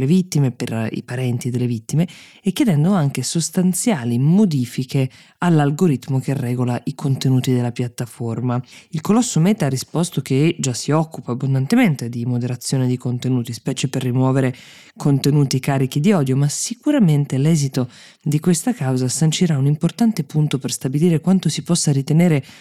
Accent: native